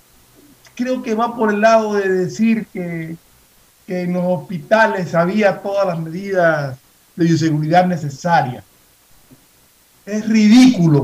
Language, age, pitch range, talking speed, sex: Spanish, 50-69, 170-215 Hz, 120 wpm, male